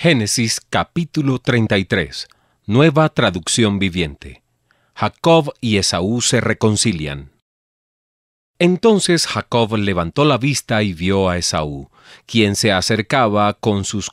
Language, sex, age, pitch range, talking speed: Spanish, male, 40-59, 95-125 Hz, 105 wpm